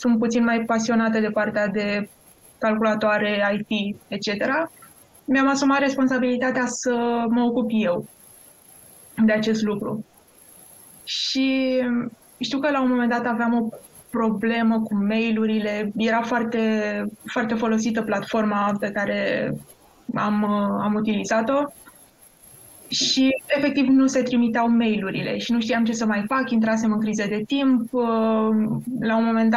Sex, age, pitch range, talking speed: female, 20-39, 215-240 Hz, 130 wpm